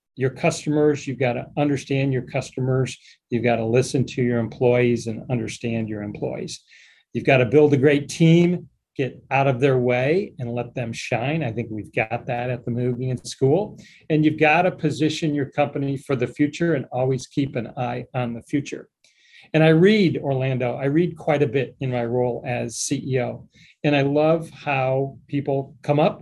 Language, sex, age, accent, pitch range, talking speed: English, male, 40-59, American, 125-150 Hz, 190 wpm